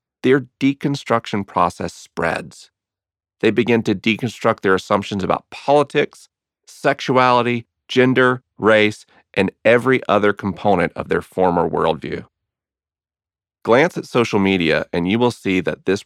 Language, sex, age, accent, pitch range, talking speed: English, male, 40-59, American, 90-120 Hz, 125 wpm